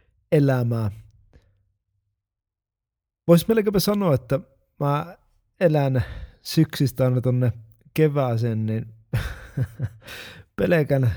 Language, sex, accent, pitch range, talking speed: Finnish, male, native, 110-140 Hz, 65 wpm